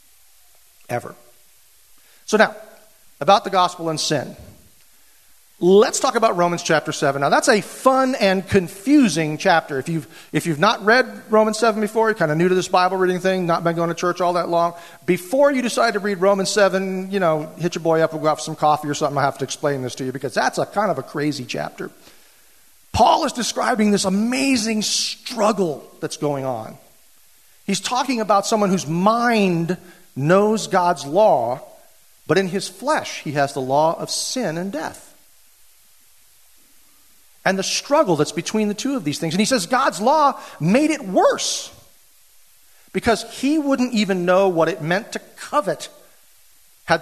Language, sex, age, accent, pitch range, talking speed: English, male, 40-59, American, 165-215 Hz, 180 wpm